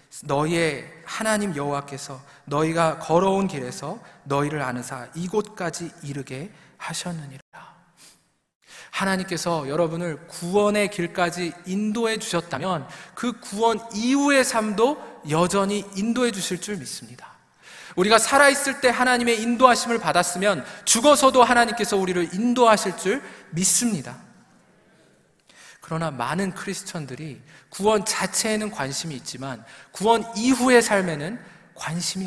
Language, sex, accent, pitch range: Korean, male, native, 165-225 Hz